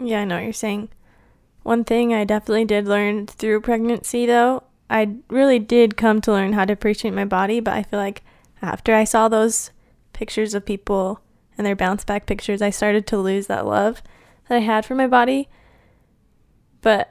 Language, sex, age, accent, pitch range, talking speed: English, female, 10-29, American, 205-235 Hz, 195 wpm